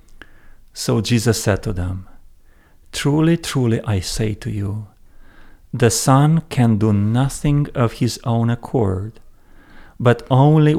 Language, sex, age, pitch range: English, male, 40-59, 105-130 Hz